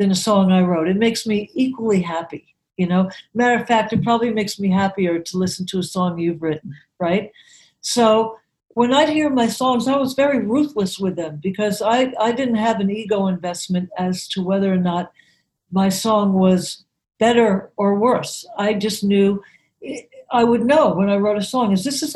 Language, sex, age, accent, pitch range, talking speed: English, female, 60-79, American, 185-235 Hz, 195 wpm